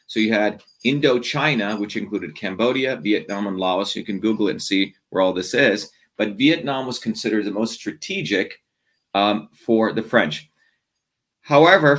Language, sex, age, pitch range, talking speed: English, male, 40-59, 105-125 Hz, 160 wpm